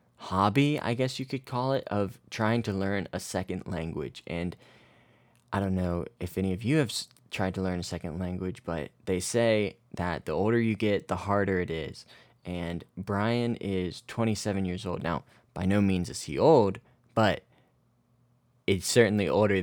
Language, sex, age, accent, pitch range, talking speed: English, male, 20-39, American, 90-105 Hz, 175 wpm